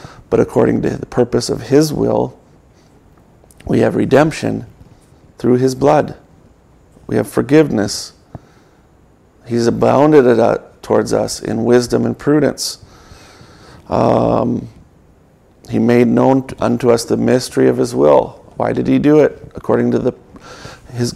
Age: 40-59